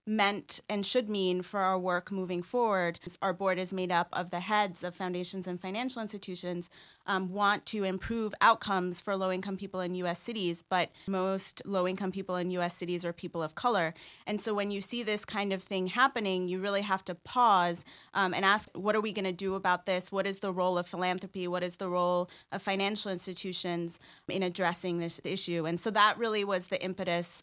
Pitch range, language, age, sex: 180-210 Hz, English, 30-49, female